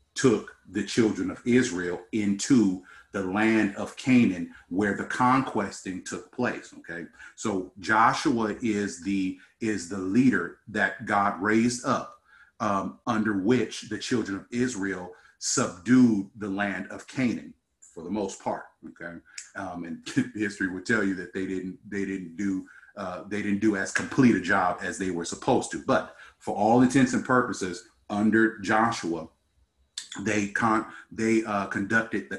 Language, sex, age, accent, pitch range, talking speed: English, male, 40-59, American, 95-110 Hz, 155 wpm